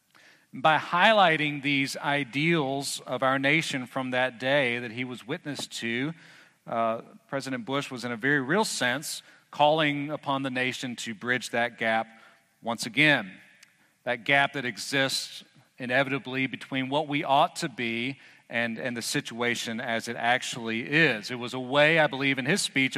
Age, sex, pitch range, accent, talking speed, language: 40-59, male, 125-155 Hz, American, 160 wpm, English